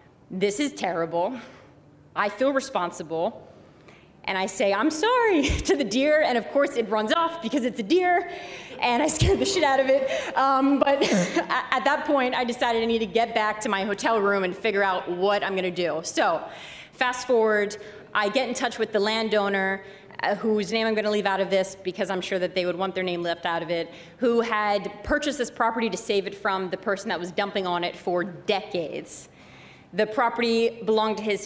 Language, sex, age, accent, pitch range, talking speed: English, female, 30-49, American, 190-230 Hz, 210 wpm